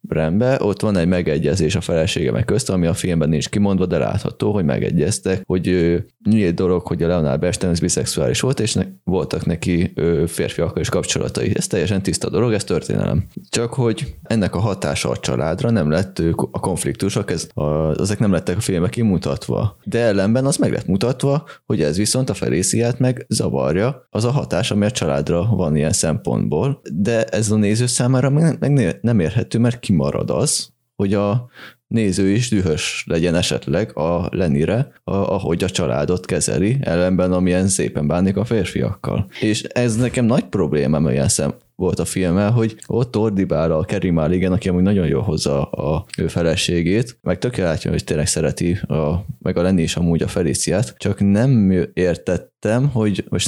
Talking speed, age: 170 wpm, 20-39